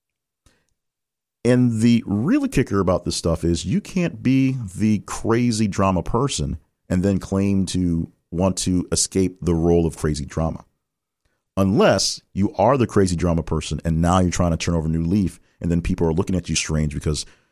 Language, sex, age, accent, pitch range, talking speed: English, male, 40-59, American, 80-100 Hz, 180 wpm